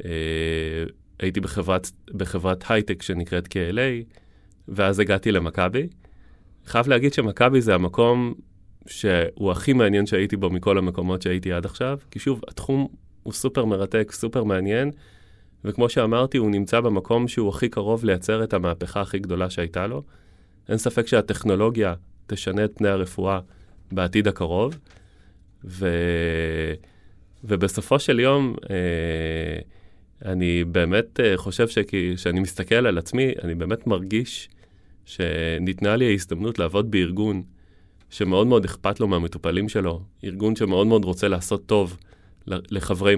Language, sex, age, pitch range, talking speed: Hebrew, male, 30-49, 90-110 Hz, 125 wpm